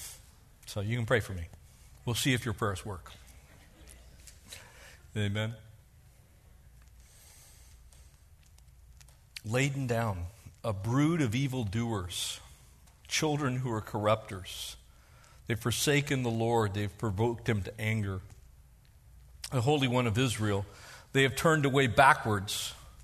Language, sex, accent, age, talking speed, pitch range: English, male, American, 50-69, 110 wpm, 85-125 Hz